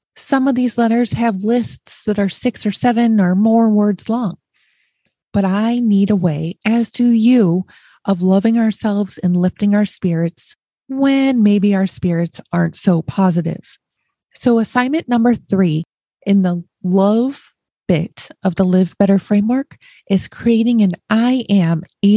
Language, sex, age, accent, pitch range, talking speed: English, female, 30-49, American, 185-230 Hz, 150 wpm